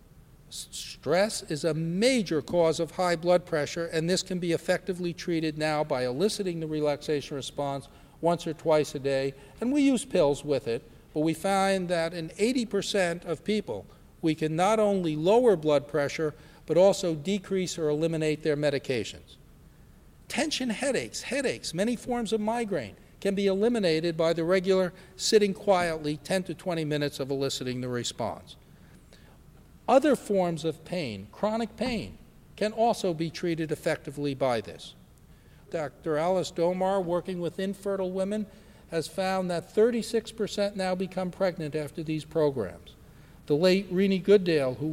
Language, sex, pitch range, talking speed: English, male, 155-195 Hz, 150 wpm